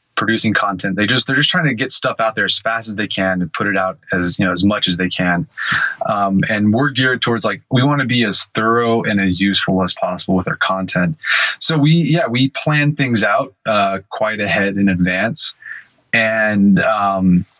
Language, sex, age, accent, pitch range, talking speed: English, male, 20-39, American, 100-115 Hz, 215 wpm